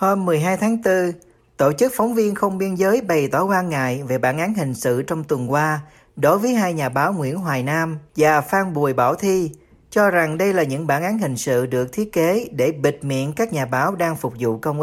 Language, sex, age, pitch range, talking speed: Vietnamese, male, 40-59, 140-190 Hz, 235 wpm